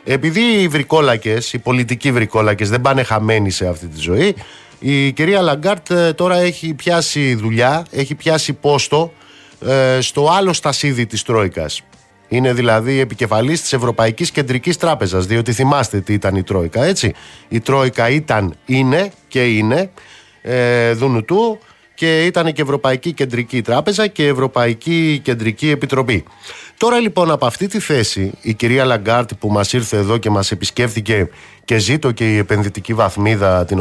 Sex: male